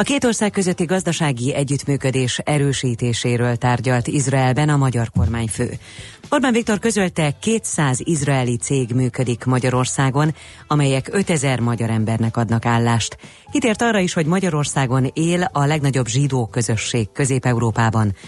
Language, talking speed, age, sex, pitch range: Hungarian, 120 wpm, 30-49, female, 115-155 Hz